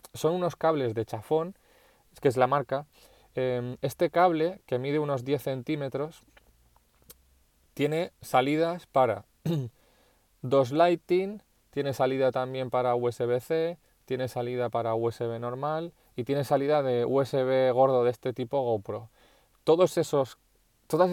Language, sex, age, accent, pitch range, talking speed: Spanish, male, 20-39, Spanish, 120-155 Hz, 120 wpm